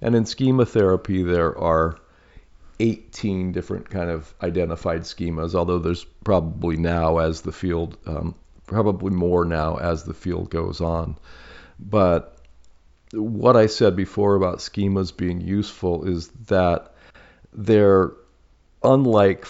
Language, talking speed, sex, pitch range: English, 125 wpm, male, 80-100 Hz